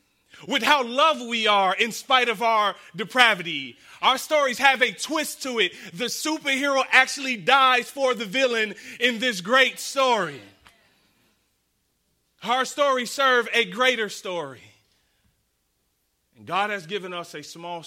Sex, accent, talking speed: male, American, 140 wpm